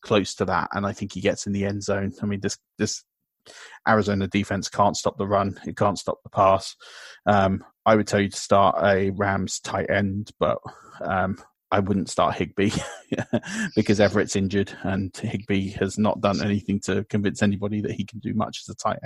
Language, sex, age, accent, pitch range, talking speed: English, male, 30-49, British, 100-105 Hz, 200 wpm